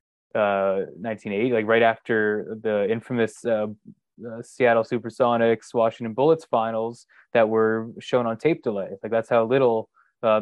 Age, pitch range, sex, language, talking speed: 20-39, 105-120 Hz, male, English, 145 wpm